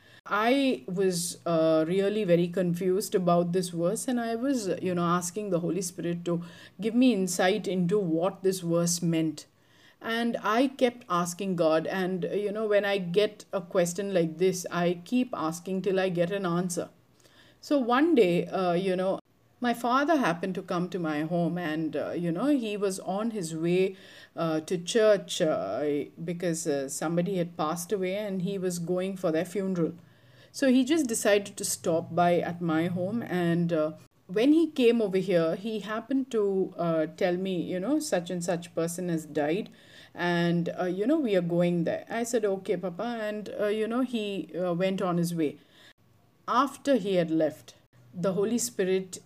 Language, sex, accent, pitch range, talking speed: English, female, Indian, 170-210 Hz, 185 wpm